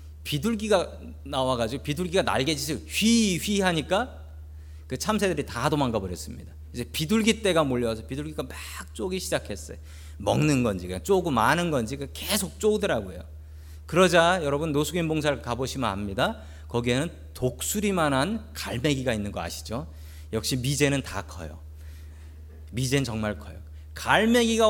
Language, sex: Korean, male